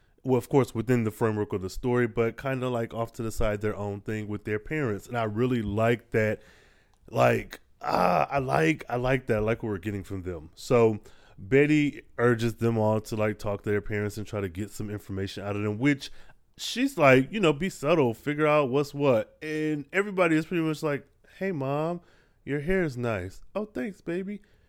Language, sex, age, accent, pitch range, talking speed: English, male, 20-39, American, 105-145 Hz, 215 wpm